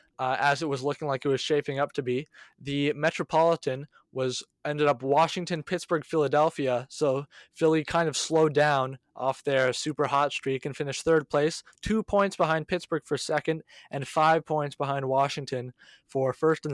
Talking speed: 175 wpm